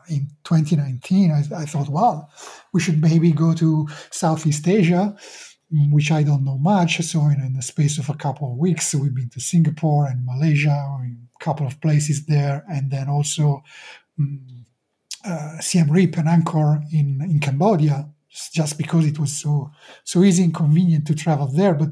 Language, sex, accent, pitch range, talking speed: English, male, Italian, 150-180 Hz, 185 wpm